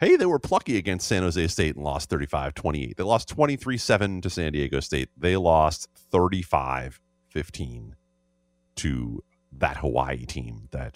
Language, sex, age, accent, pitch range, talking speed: English, male, 30-49, American, 75-105 Hz, 140 wpm